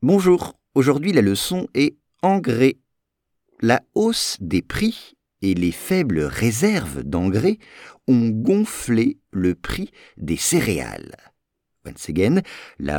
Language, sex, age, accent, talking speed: English, male, 50-69, French, 110 wpm